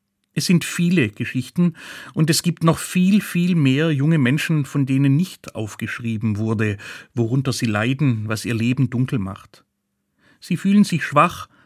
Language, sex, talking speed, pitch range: German, male, 155 wpm, 120-160 Hz